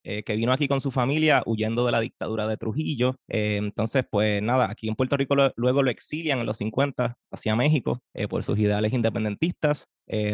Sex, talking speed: male, 210 wpm